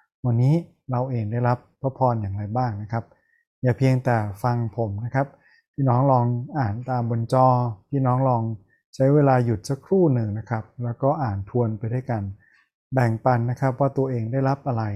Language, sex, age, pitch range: Thai, male, 20-39, 110-135 Hz